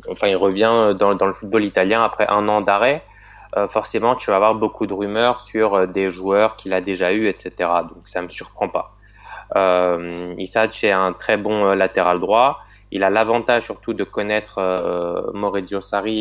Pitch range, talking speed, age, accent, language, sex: 95-105 Hz, 195 wpm, 20-39, French, French, male